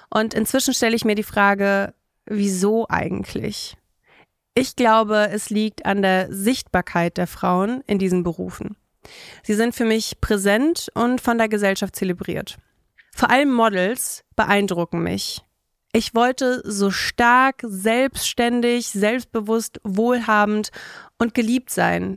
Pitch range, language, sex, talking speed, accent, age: 195-240 Hz, German, female, 125 wpm, German, 30-49